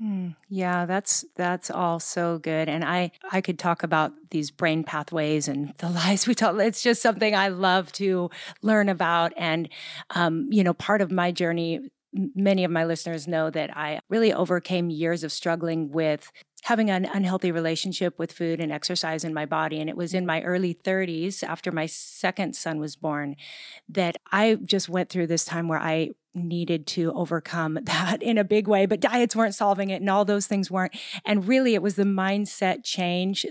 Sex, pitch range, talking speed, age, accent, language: female, 165-200 Hz, 190 wpm, 30-49, American, English